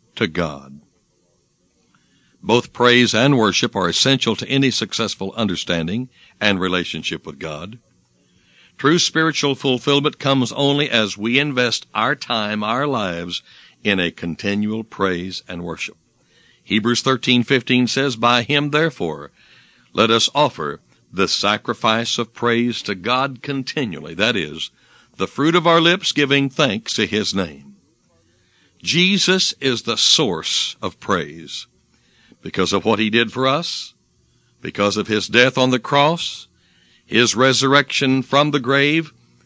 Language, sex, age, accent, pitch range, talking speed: English, male, 60-79, American, 90-135 Hz, 130 wpm